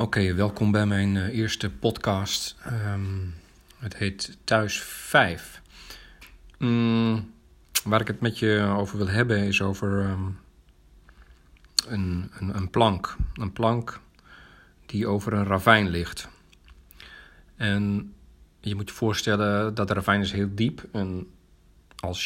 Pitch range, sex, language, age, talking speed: 75-110 Hz, male, Dutch, 40-59, 120 wpm